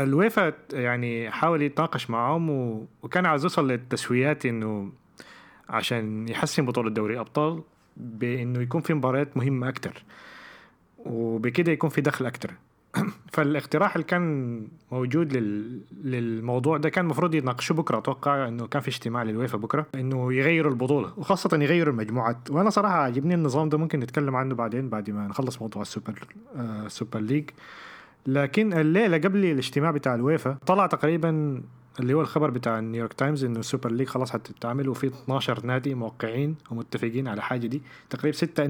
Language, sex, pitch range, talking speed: Arabic, male, 115-150 Hz, 145 wpm